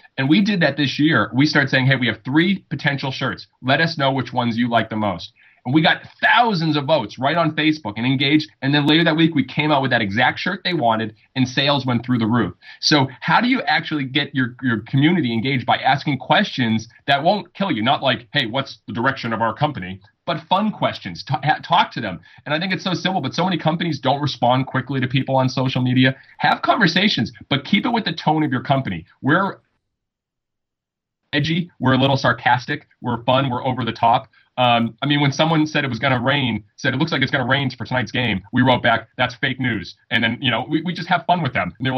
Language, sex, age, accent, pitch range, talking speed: English, male, 30-49, American, 120-155 Hz, 240 wpm